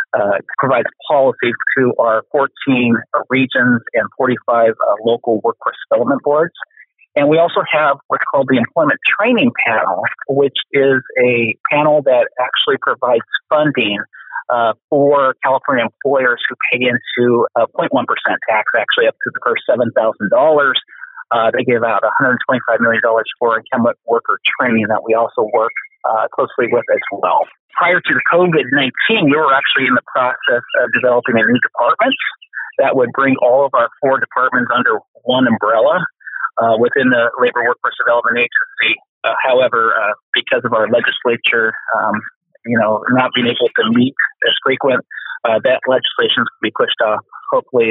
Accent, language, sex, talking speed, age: American, English, male, 155 wpm, 40-59